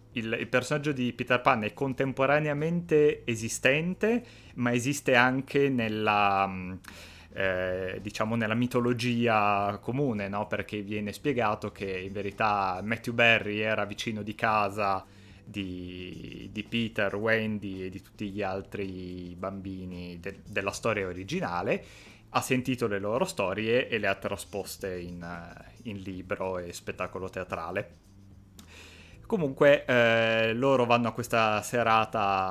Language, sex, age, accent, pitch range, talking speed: Italian, male, 30-49, native, 95-115 Hz, 125 wpm